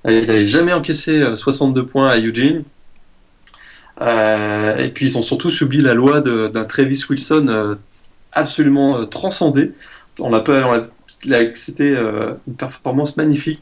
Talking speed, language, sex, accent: 155 wpm, French, male, French